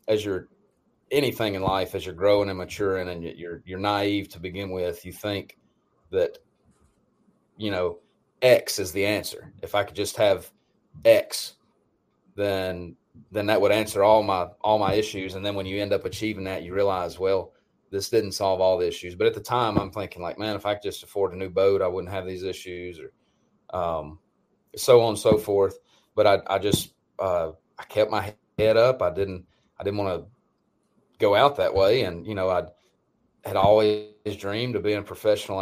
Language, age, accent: English, 30-49, American